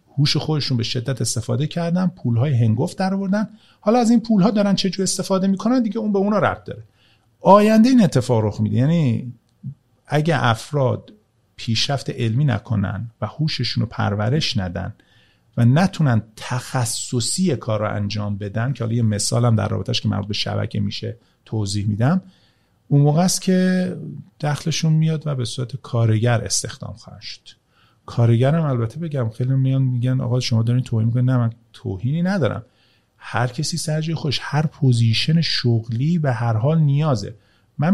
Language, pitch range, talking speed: Persian, 115-180 Hz, 155 wpm